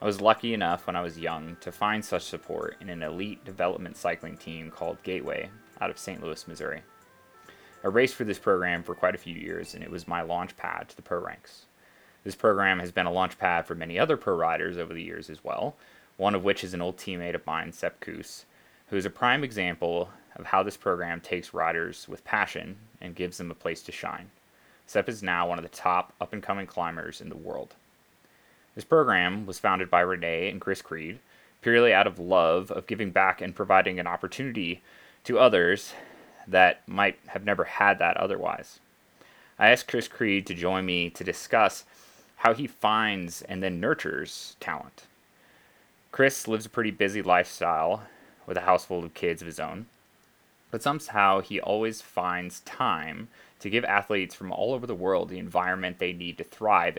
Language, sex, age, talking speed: English, male, 20-39, 195 wpm